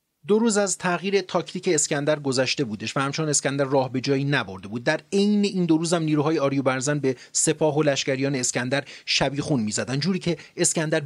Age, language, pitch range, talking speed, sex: 30-49, Persian, 130-155 Hz, 180 wpm, male